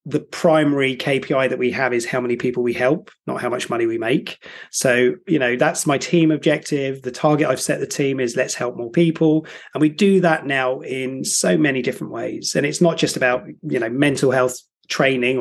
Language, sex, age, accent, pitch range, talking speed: English, male, 30-49, British, 125-160 Hz, 220 wpm